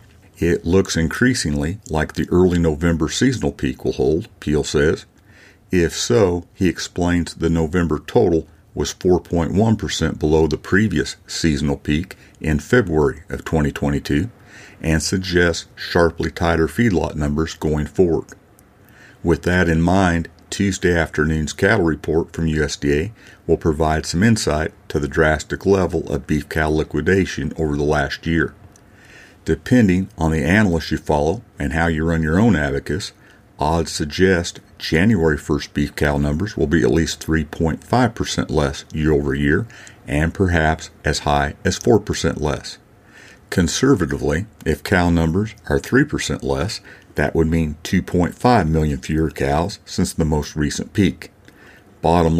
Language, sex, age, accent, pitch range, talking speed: English, male, 50-69, American, 75-95 Hz, 140 wpm